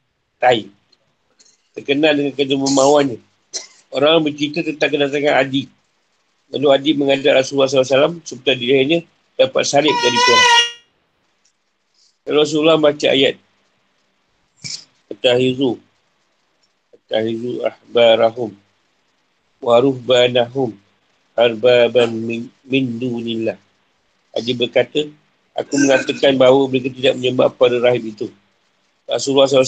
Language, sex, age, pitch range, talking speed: Malay, male, 50-69, 120-145 Hz, 95 wpm